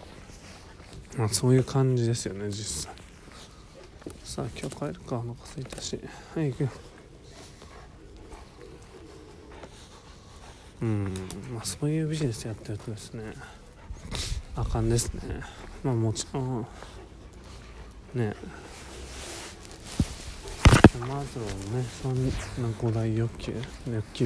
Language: Japanese